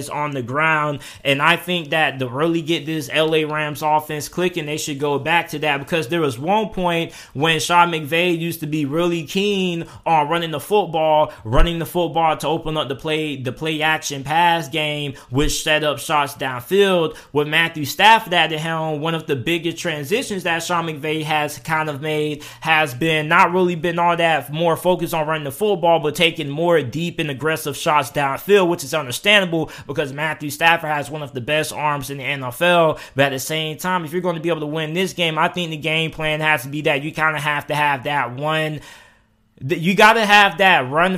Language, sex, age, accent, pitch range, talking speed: English, male, 20-39, American, 150-170 Hz, 215 wpm